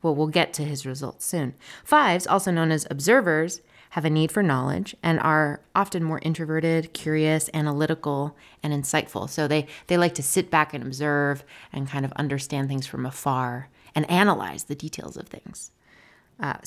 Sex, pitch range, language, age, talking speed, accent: female, 140-170 Hz, English, 30-49, 175 wpm, American